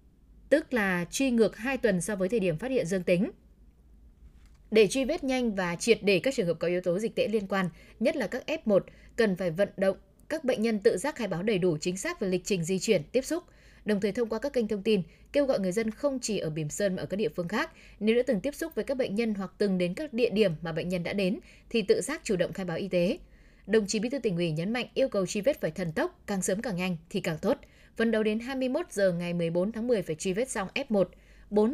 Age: 10-29